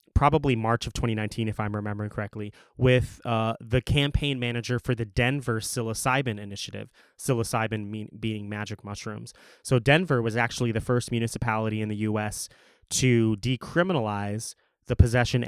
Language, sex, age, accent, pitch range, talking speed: English, male, 20-39, American, 110-130 Hz, 140 wpm